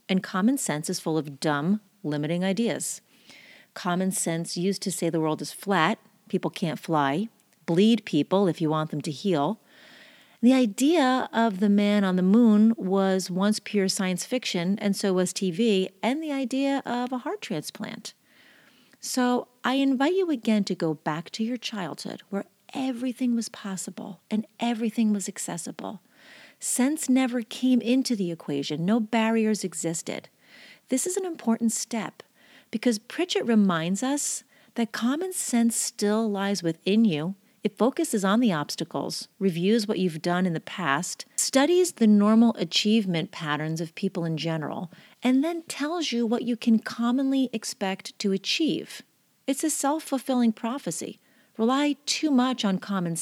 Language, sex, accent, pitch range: English, female, American, 190-250 Hz